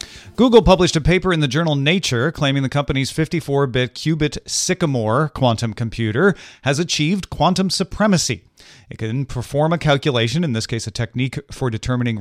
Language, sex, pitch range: English, male, 110-150 Hz